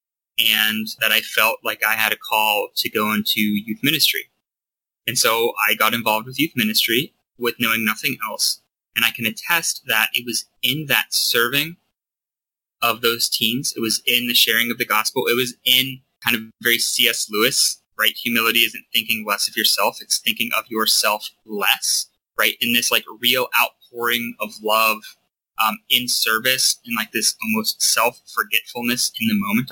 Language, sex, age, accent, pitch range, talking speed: English, male, 20-39, American, 110-125 Hz, 175 wpm